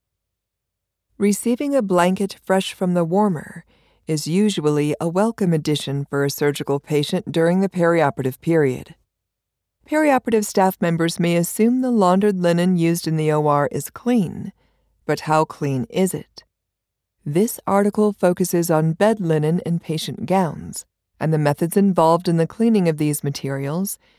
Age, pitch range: 40-59, 150-205 Hz